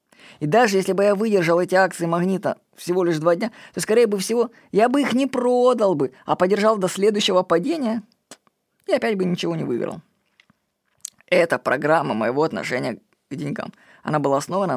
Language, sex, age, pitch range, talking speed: Russian, female, 20-39, 170-210 Hz, 170 wpm